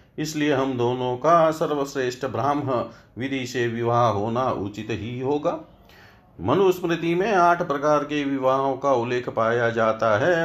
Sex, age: male, 50-69